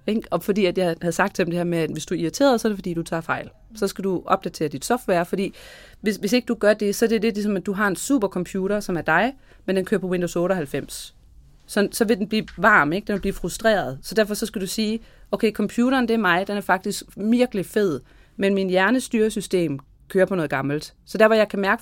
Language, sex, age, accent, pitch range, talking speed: Danish, female, 30-49, native, 170-210 Hz, 260 wpm